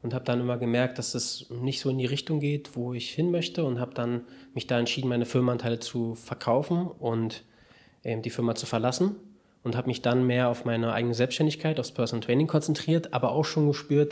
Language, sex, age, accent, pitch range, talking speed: German, male, 20-39, German, 120-140 Hz, 215 wpm